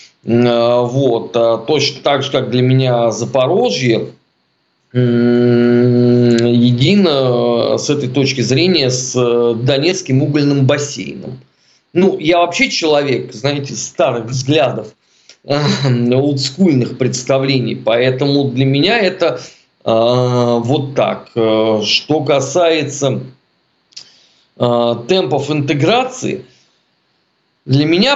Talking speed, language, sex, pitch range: 80 wpm, Russian, male, 120-160 Hz